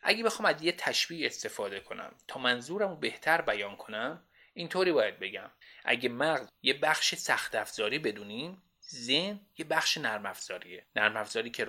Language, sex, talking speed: Persian, male, 150 wpm